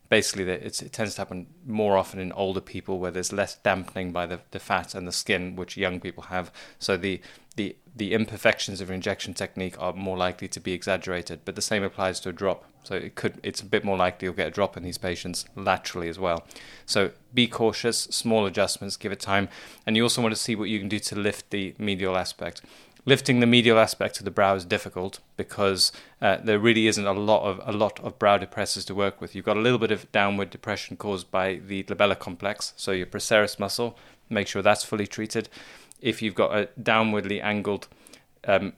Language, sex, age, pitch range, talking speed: English, male, 20-39, 95-110 Hz, 220 wpm